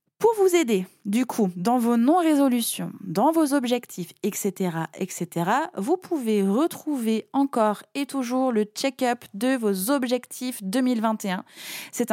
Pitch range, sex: 180-255 Hz, female